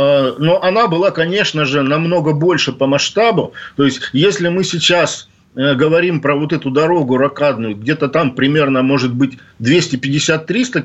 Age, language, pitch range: 50-69, Russian, 140-175 Hz